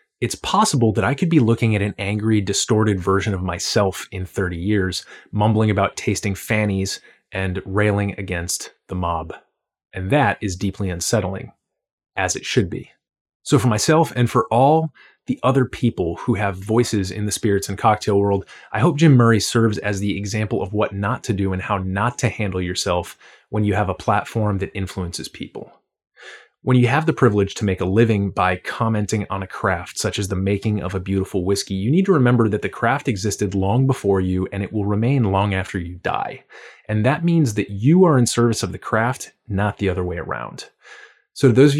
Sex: male